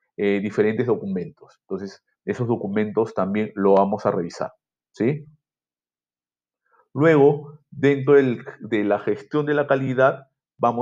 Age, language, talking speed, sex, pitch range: 40-59, Spanish, 110 wpm, male, 100-125 Hz